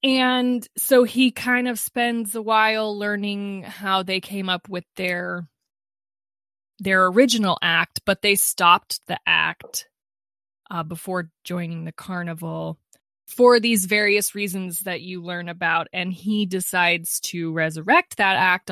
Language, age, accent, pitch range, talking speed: English, 20-39, American, 170-220 Hz, 140 wpm